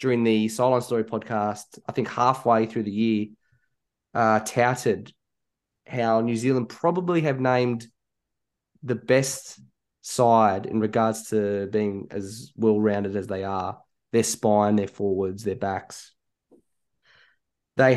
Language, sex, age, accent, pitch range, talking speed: English, male, 20-39, Australian, 105-120 Hz, 125 wpm